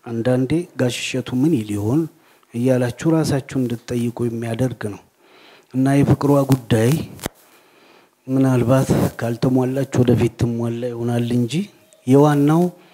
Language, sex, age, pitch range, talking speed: Amharic, male, 30-49, 120-145 Hz, 95 wpm